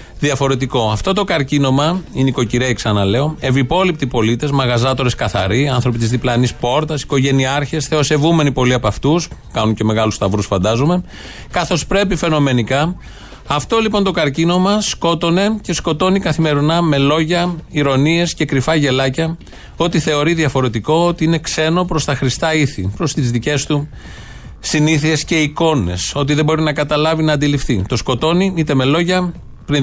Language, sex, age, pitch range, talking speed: Greek, male, 30-49, 125-160 Hz, 145 wpm